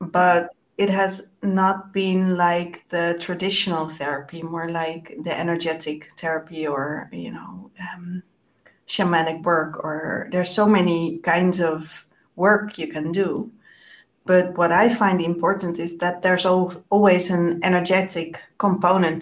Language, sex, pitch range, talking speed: English, female, 170-200 Hz, 130 wpm